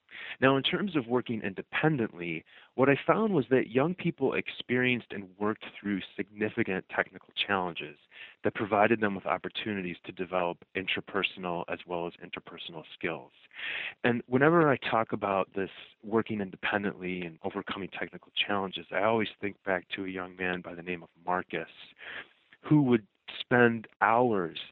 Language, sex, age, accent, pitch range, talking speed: English, male, 30-49, American, 95-125 Hz, 150 wpm